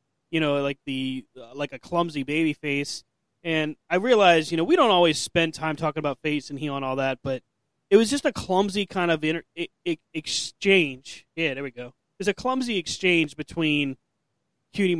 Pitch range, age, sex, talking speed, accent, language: 140-170 Hz, 20-39, male, 200 wpm, American, English